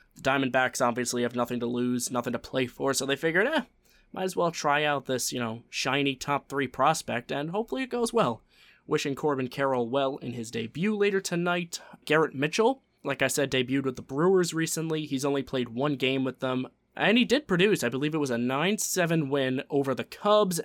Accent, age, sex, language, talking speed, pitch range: American, 20-39, male, English, 210 wpm, 125-170 Hz